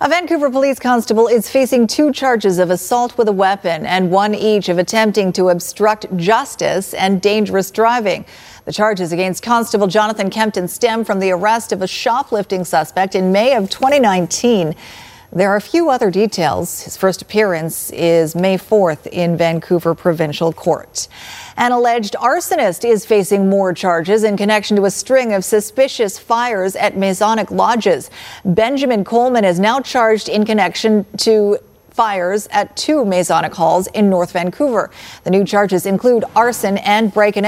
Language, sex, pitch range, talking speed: English, female, 180-225 Hz, 160 wpm